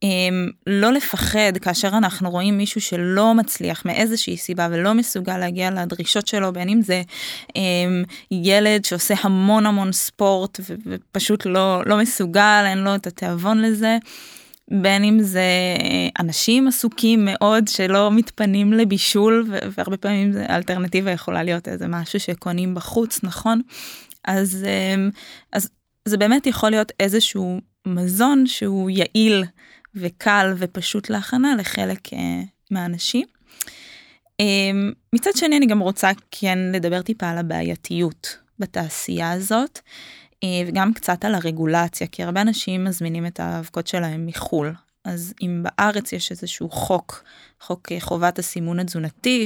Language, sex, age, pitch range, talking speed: Hebrew, female, 20-39, 180-215 Hz, 130 wpm